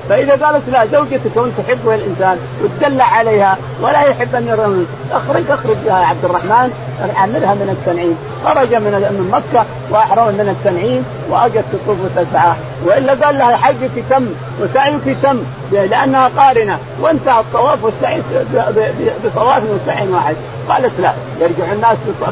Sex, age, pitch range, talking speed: male, 50-69, 170-230 Hz, 120 wpm